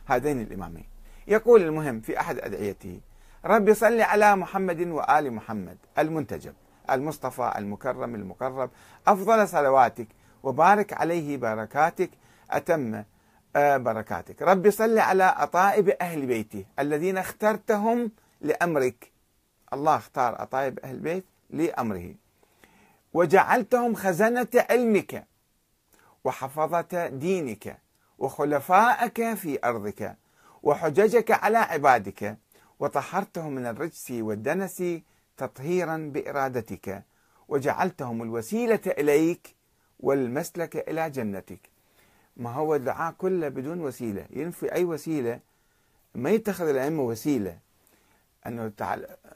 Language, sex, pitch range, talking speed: Arabic, male, 120-185 Hz, 90 wpm